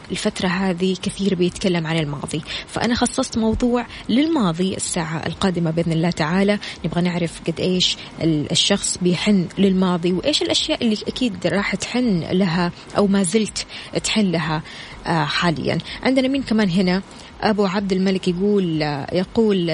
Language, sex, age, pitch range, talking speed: Arabic, female, 20-39, 180-215 Hz, 135 wpm